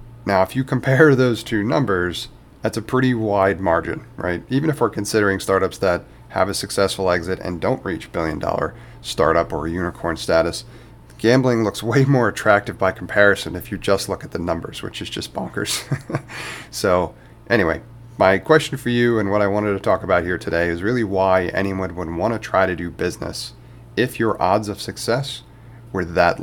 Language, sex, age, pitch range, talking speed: English, male, 30-49, 95-120 Hz, 185 wpm